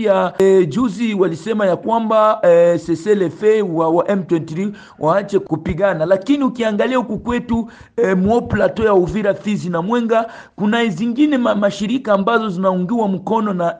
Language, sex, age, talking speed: Swahili, male, 50-69, 140 wpm